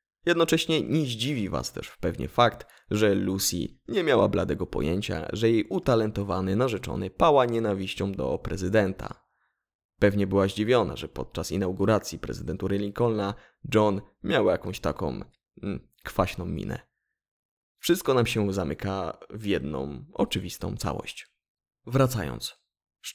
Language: Polish